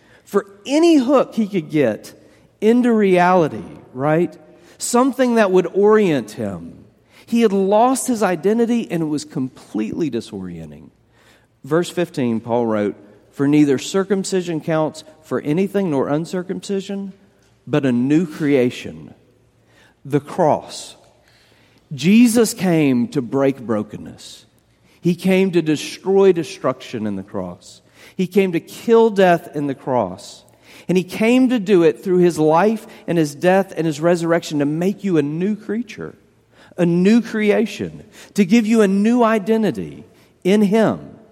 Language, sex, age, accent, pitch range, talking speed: English, male, 40-59, American, 140-205 Hz, 140 wpm